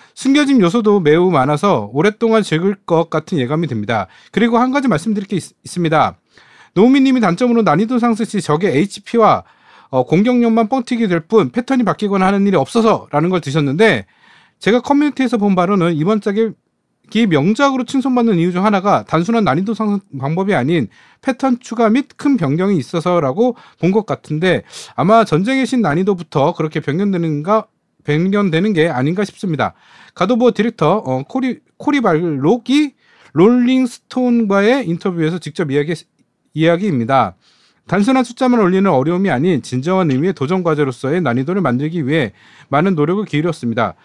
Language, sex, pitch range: Korean, male, 155-230 Hz